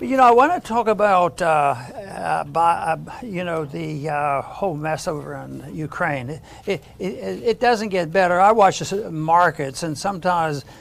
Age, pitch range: 60-79, 170-220 Hz